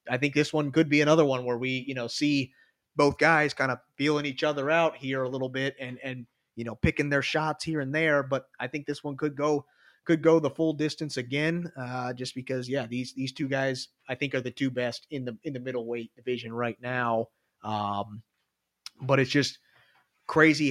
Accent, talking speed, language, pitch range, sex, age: American, 215 wpm, English, 130-155 Hz, male, 30-49